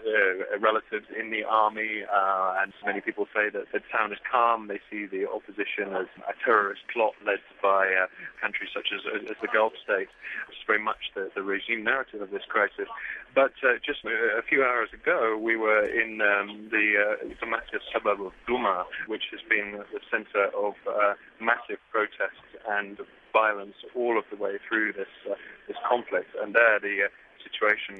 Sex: male